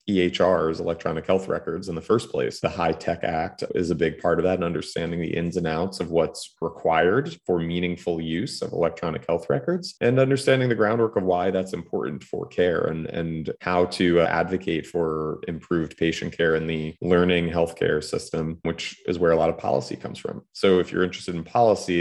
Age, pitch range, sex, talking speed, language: 30-49, 80-90 Hz, male, 200 wpm, English